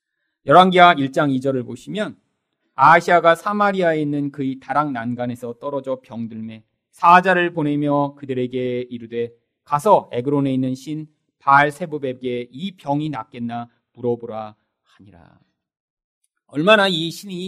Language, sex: Korean, male